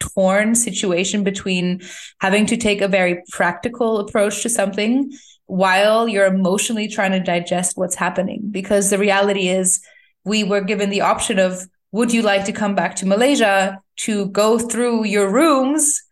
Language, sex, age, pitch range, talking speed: English, female, 20-39, 185-220 Hz, 160 wpm